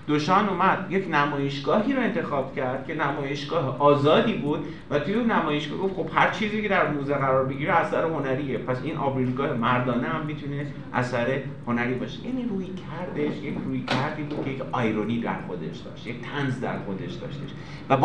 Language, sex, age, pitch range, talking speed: Persian, male, 30-49, 135-180 Hz, 180 wpm